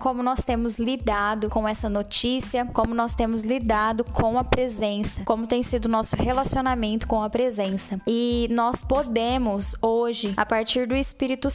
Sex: female